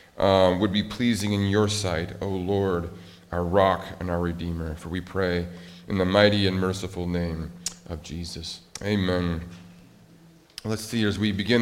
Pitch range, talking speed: 100-150 Hz, 160 wpm